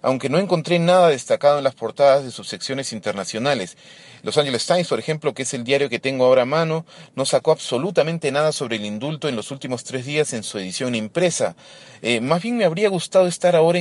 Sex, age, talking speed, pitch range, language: male, 30-49, 215 wpm, 115-155 Hz, Spanish